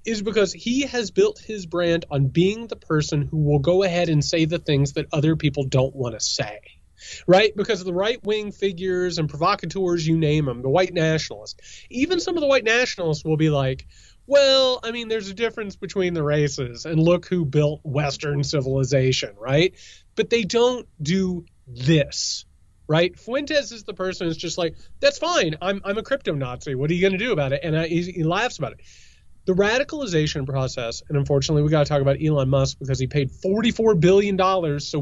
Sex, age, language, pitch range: male, 30-49, English, 150-215 Hz